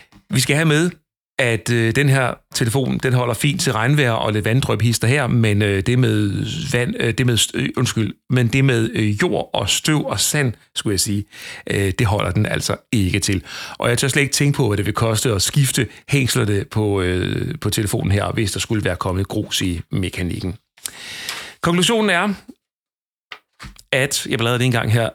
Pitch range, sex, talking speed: 105-135 Hz, male, 180 wpm